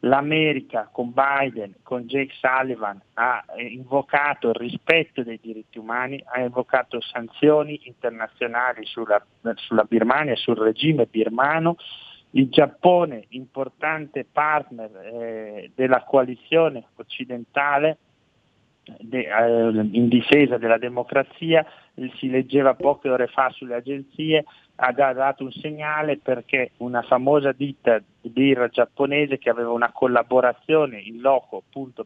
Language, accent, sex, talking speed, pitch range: Italian, native, male, 115 wpm, 120-140 Hz